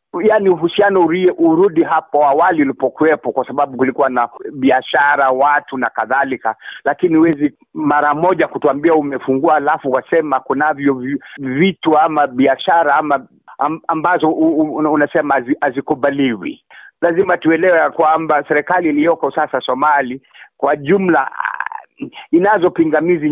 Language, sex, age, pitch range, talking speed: Swahili, male, 50-69, 135-170 Hz, 110 wpm